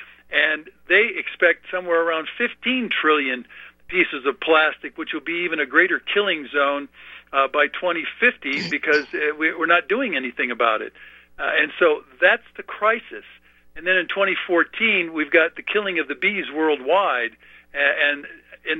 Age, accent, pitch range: 50-69, American, 145-190 Hz